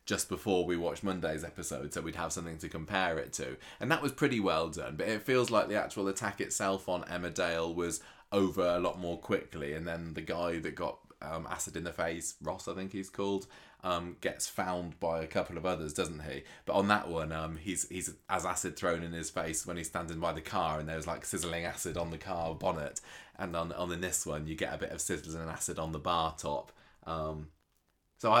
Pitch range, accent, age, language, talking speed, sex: 80-100 Hz, British, 20-39, English, 230 wpm, male